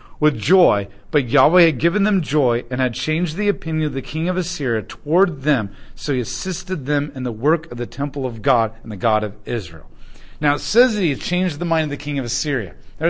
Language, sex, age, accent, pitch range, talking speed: English, male, 40-59, American, 120-160 Hz, 240 wpm